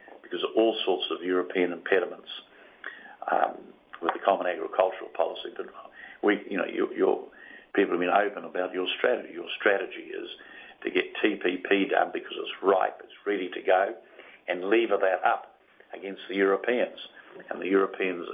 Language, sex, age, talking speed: English, male, 50-69, 165 wpm